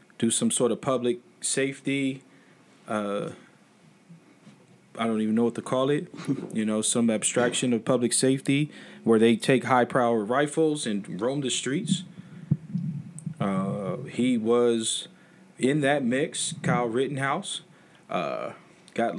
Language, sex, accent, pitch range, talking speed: English, male, American, 110-150 Hz, 130 wpm